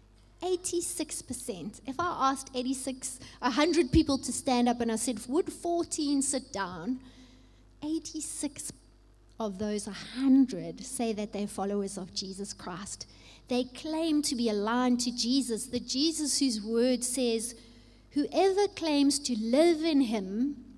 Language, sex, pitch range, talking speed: English, female, 205-275 Hz, 130 wpm